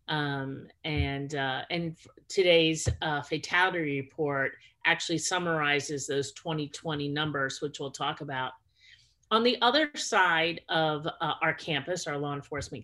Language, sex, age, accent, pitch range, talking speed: English, female, 40-59, American, 140-170 Hz, 130 wpm